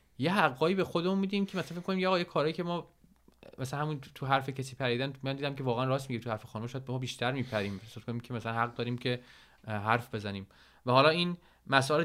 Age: 20-39